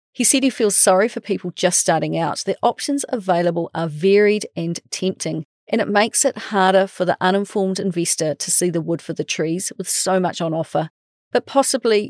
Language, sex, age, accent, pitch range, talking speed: English, female, 40-59, Australian, 170-220 Hz, 200 wpm